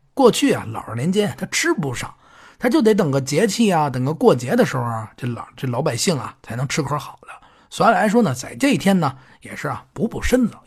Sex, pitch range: male, 120-205 Hz